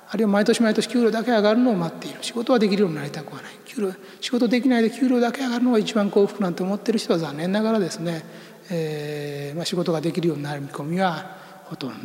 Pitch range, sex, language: 170-225 Hz, male, Japanese